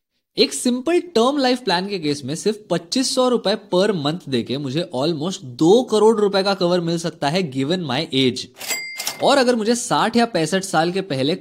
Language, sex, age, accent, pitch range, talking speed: Hindi, male, 20-39, native, 140-210 Hz, 190 wpm